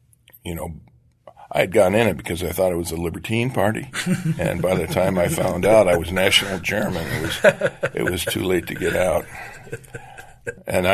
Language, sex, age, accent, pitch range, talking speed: English, male, 50-69, American, 80-95 Hz, 195 wpm